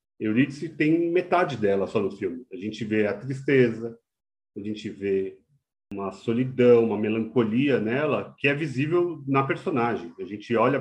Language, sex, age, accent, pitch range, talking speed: Portuguese, male, 40-59, Brazilian, 105-130 Hz, 155 wpm